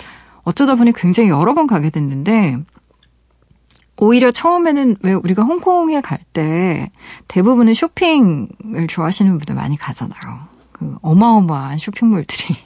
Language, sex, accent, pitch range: Korean, female, native, 155-225 Hz